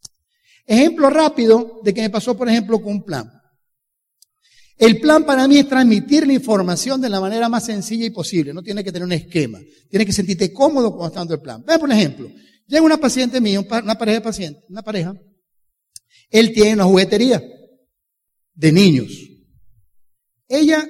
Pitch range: 165-245 Hz